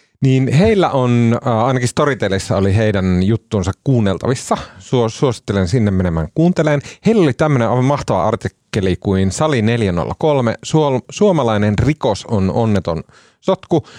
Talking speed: 110 wpm